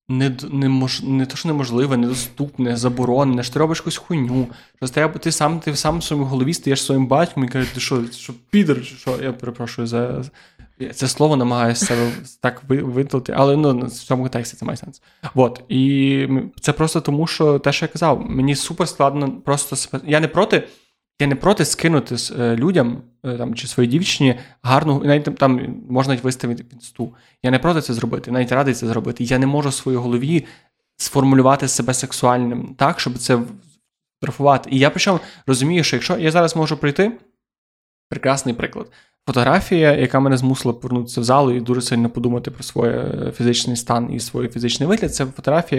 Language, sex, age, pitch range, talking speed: Ukrainian, male, 20-39, 125-150 Hz, 180 wpm